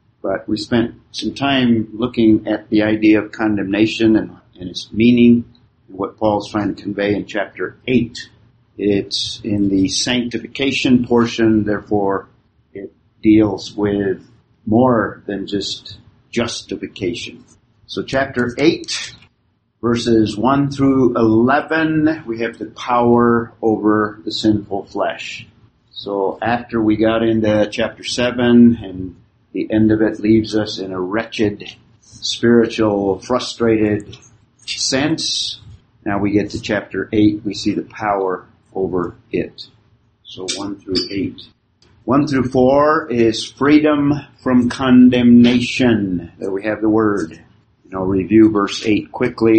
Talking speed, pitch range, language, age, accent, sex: 130 wpm, 105-120 Hz, English, 50-69, American, male